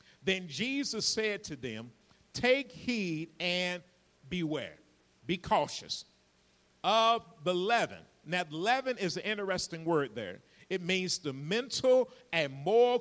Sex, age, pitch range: male, 50-69, 150-220 Hz